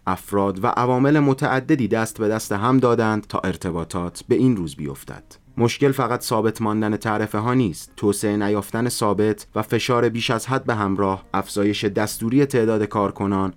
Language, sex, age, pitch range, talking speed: Persian, male, 30-49, 95-115 Hz, 160 wpm